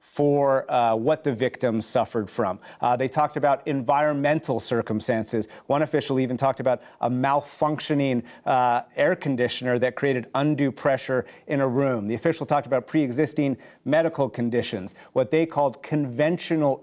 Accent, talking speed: American, 145 wpm